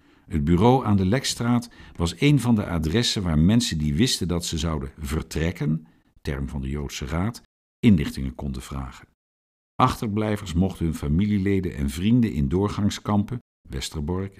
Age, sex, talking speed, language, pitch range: 50-69, male, 145 wpm, Dutch, 75-105 Hz